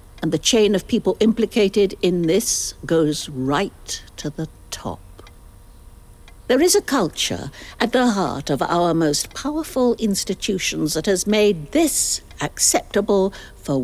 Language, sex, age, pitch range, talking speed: English, female, 60-79, 150-220 Hz, 135 wpm